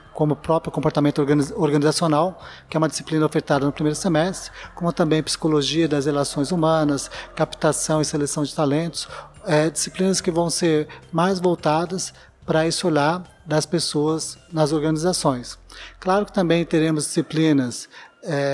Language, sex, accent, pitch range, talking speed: Portuguese, male, Brazilian, 145-170 Hz, 135 wpm